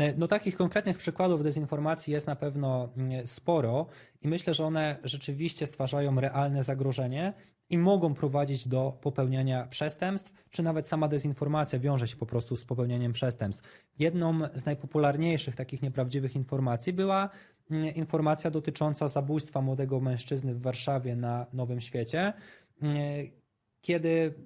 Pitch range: 130-155 Hz